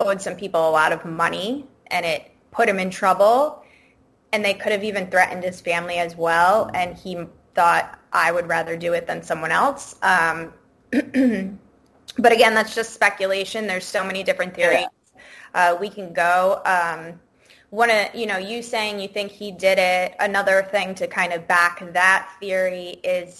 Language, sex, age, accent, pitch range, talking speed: English, female, 20-39, American, 180-210 Hz, 175 wpm